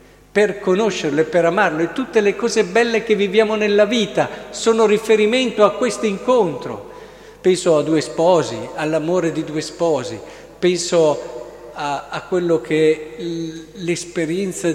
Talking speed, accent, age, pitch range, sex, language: 140 wpm, native, 50-69, 155-210 Hz, male, Italian